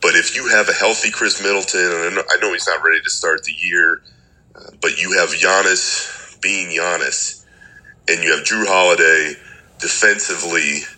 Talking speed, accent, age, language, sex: 165 wpm, American, 40-59, English, male